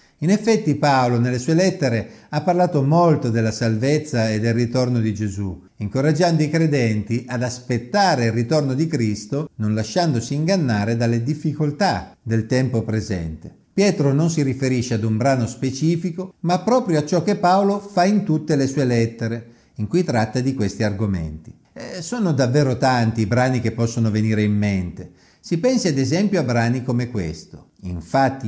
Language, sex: Italian, male